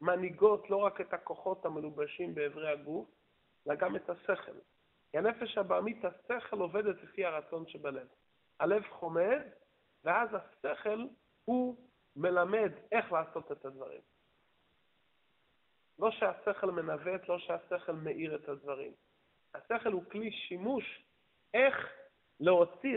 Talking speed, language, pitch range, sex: 115 wpm, Hebrew, 170-215 Hz, male